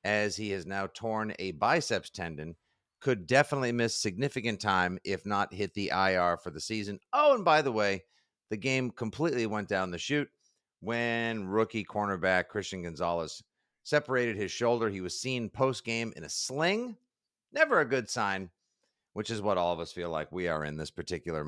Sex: male